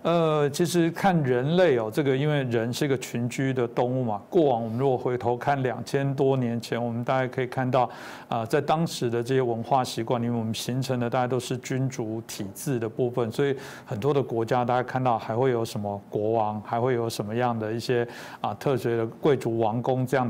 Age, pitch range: 60-79, 120-150 Hz